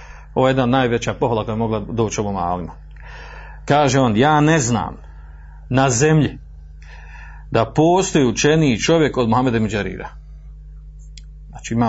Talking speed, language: 130 wpm, Croatian